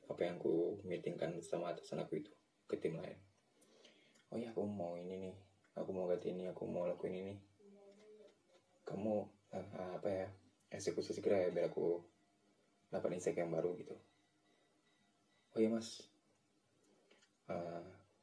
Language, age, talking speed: Indonesian, 20-39, 140 wpm